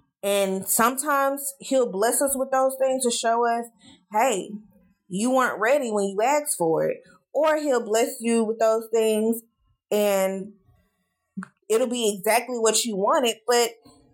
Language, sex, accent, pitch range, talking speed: English, female, American, 185-225 Hz, 150 wpm